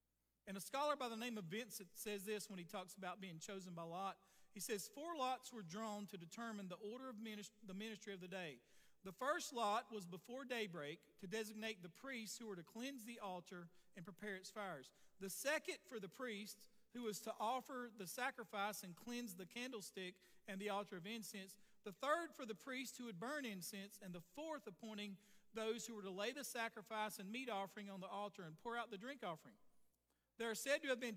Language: English